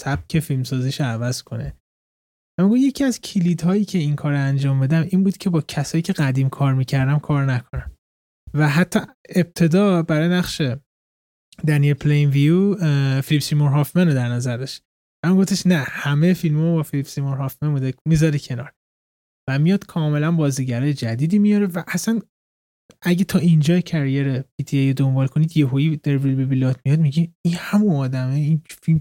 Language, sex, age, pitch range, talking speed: Persian, male, 20-39, 135-170 Hz, 160 wpm